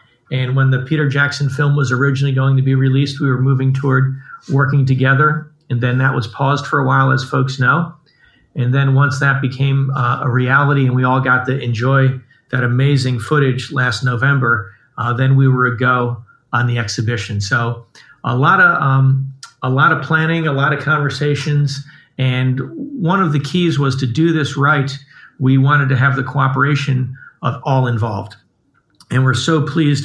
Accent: American